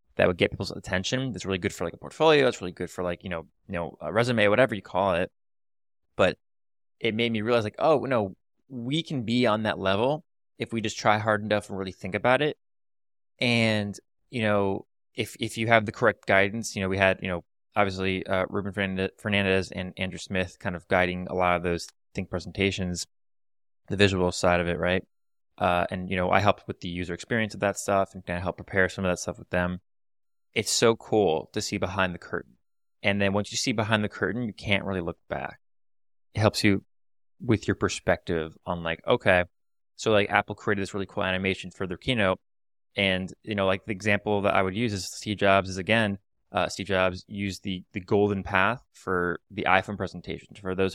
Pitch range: 95-105 Hz